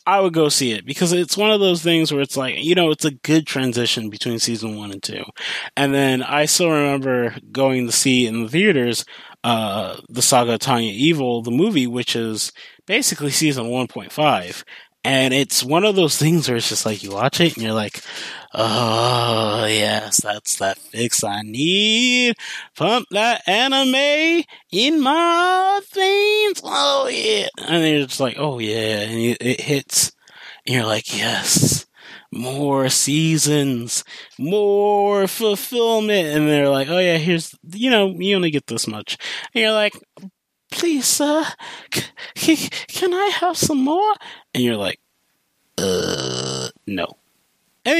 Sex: male